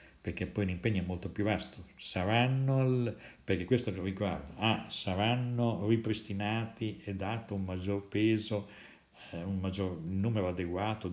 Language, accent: Italian, native